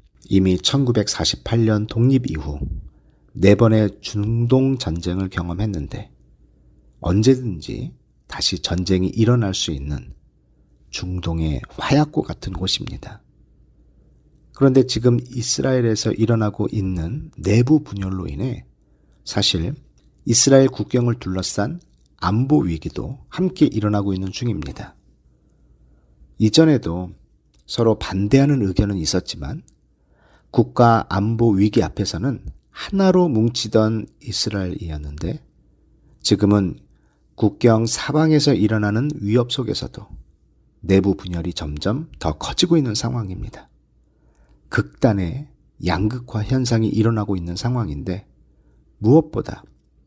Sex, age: male, 40-59